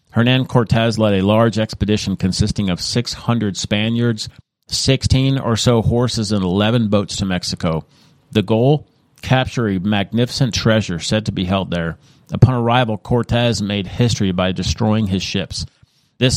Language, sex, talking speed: English, male, 145 wpm